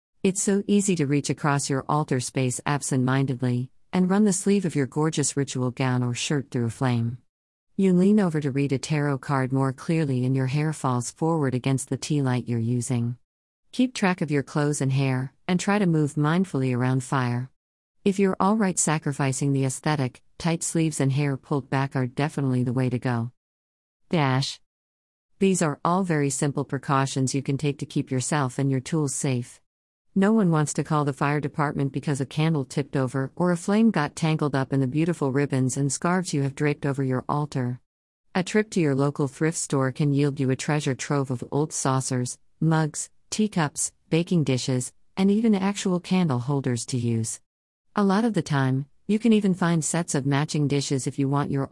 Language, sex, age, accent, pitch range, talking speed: English, female, 50-69, American, 130-160 Hz, 195 wpm